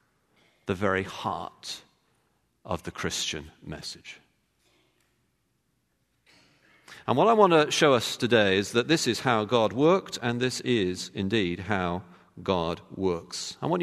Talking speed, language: 135 wpm, English